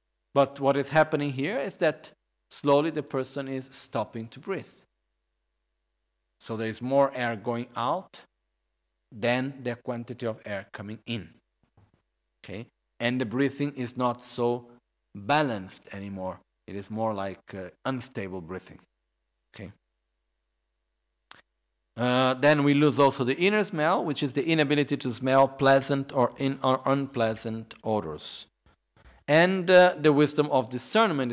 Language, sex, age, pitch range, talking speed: Italian, male, 50-69, 110-140 Hz, 135 wpm